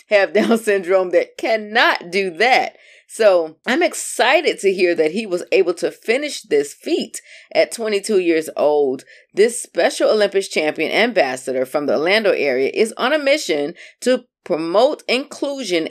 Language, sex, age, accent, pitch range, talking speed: English, female, 30-49, American, 165-265 Hz, 150 wpm